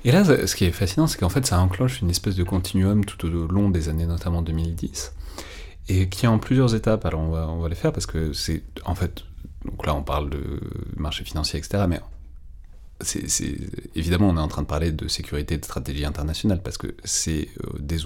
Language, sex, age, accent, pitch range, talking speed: French, male, 30-49, French, 75-95 Hz, 225 wpm